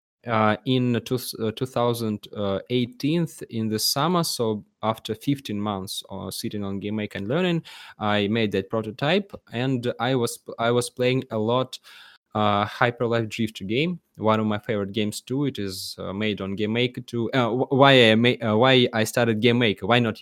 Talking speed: 185 wpm